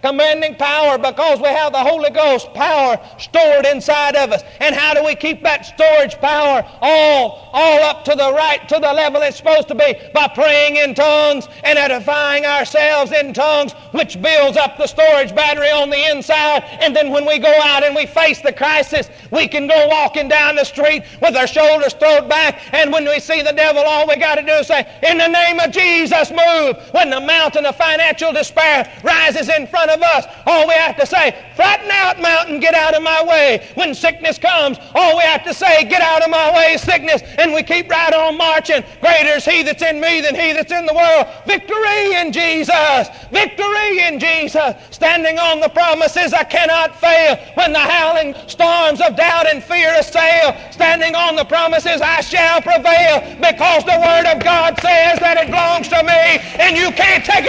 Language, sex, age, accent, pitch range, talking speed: English, male, 40-59, American, 295-330 Hz, 205 wpm